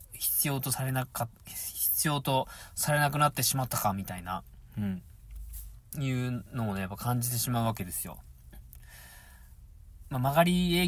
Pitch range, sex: 95-140 Hz, male